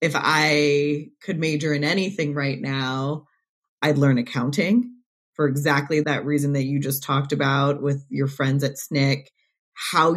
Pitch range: 140-155 Hz